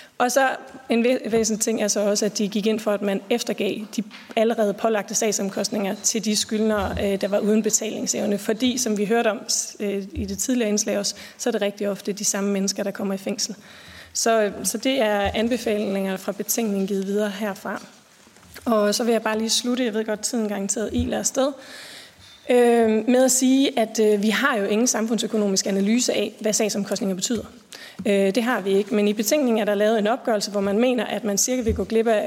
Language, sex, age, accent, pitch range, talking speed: Danish, female, 30-49, native, 205-225 Hz, 205 wpm